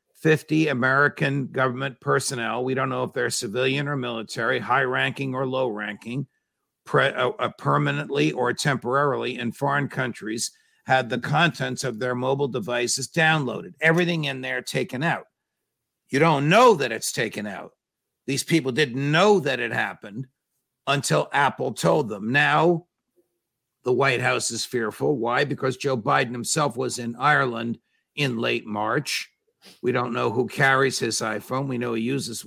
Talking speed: 150 wpm